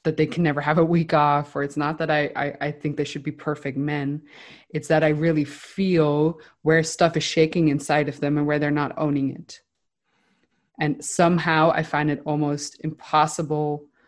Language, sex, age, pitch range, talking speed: English, female, 20-39, 155-180 Hz, 195 wpm